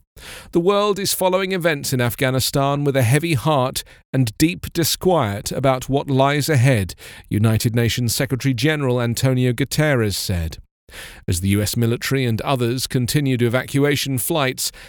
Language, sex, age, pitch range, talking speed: English, male, 40-59, 115-150 Hz, 135 wpm